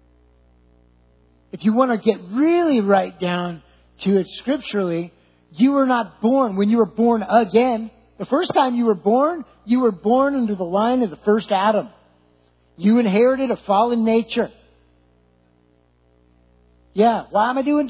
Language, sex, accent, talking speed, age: English, male, American, 155 wpm, 50-69